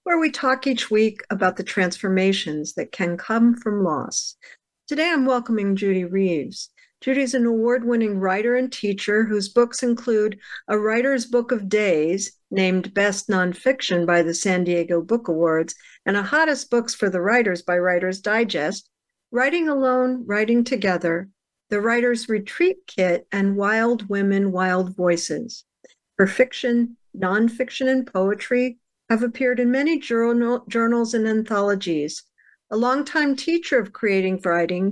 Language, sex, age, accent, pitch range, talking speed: English, female, 60-79, American, 190-245 Hz, 145 wpm